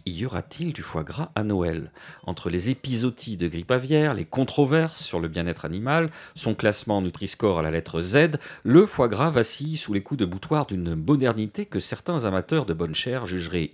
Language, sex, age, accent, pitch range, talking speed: French, male, 40-59, French, 90-145 Hz, 195 wpm